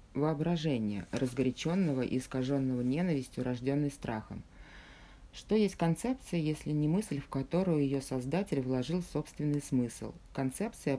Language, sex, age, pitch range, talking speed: Russian, female, 30-49, 130-155 Hz, 115 wpm